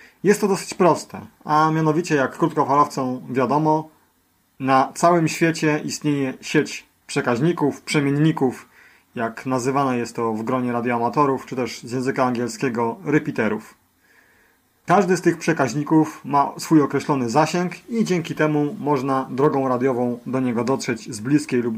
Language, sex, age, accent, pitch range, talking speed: Polish, male, 30-49, native, 125-155 Hz, 135 wpm